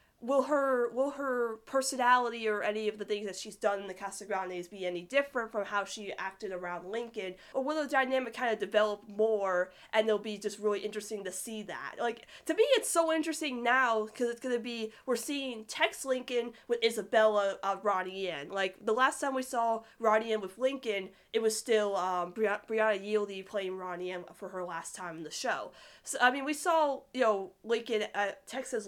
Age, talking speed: 20-39, 210 wpm